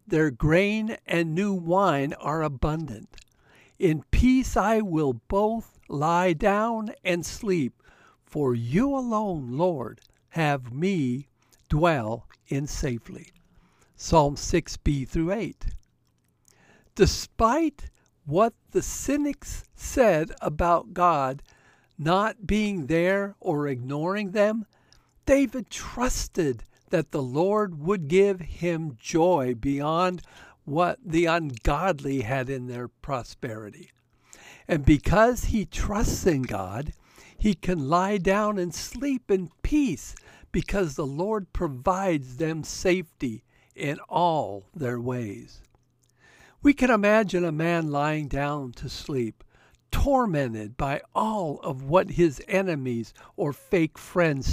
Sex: male